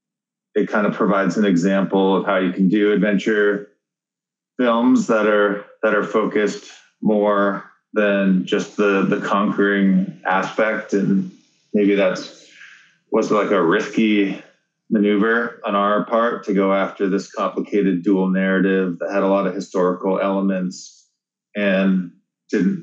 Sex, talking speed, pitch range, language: male, 135 wpm, 95-105 Hz, English